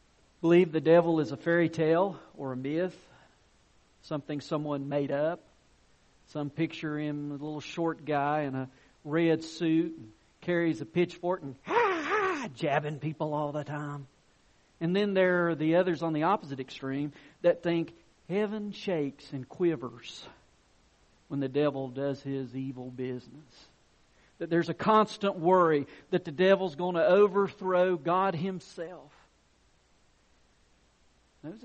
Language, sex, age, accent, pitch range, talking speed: English, male, 50-69, American, 140-175 Hz, 135 wpm